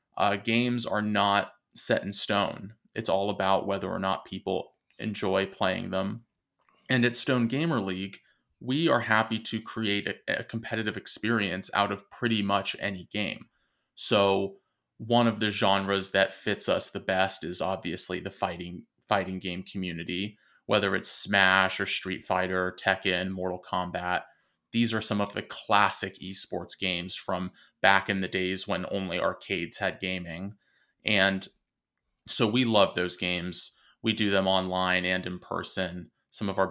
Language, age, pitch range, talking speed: English, 20-39, 90-105 Hz, 160 wpm